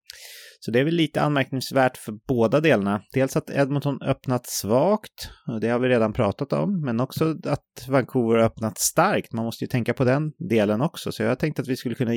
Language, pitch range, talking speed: English, 105-140 Hz, 205 wpm